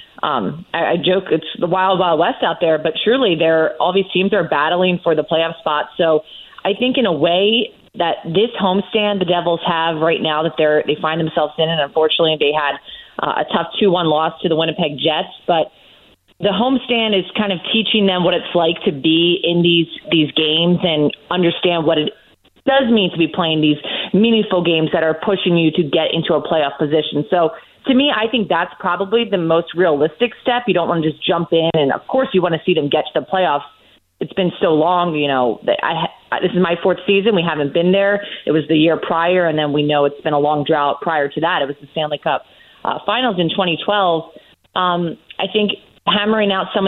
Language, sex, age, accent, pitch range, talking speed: English, female, 30-49, American, 155-190 Hz, 225 wpm